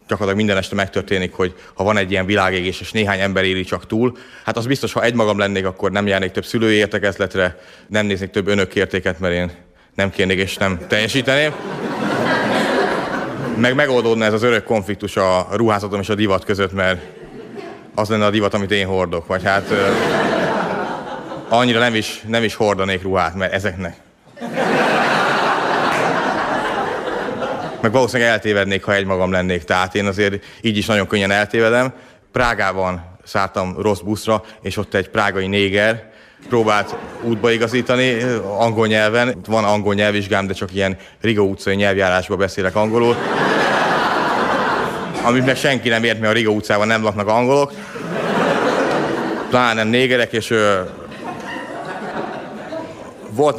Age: 30-49